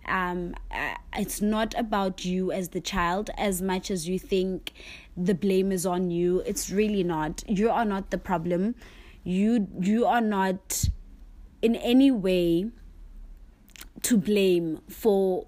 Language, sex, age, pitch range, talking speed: English, female, 20-39, 180-215 Hz, 140 wpm